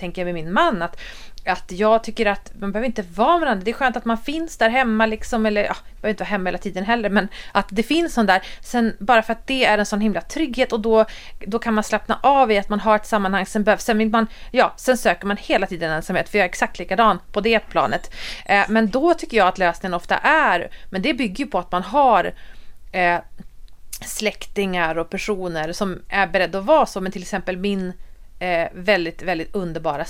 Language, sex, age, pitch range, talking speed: Swedish, female, 30-49, 190-245 Hz, 230 wpm